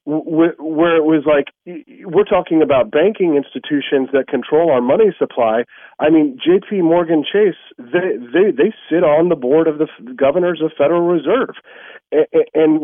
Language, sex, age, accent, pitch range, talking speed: English, male, 40-59, American, 145-215 Hz, 155 wpm